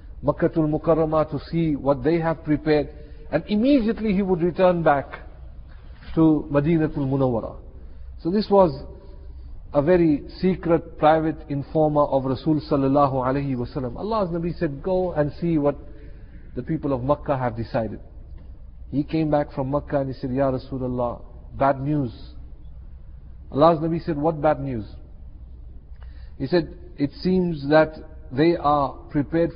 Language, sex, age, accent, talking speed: English, male, 50-69, Indian, 140 wpm